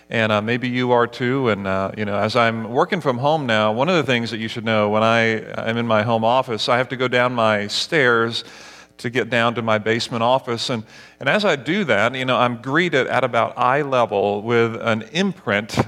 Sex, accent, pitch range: male, American, 110-130 Hz